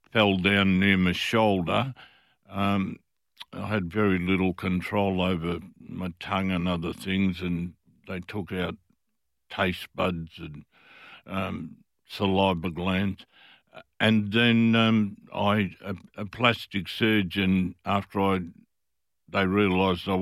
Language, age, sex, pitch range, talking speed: English, 60-79, male, 95-105 Hz, 120 wpm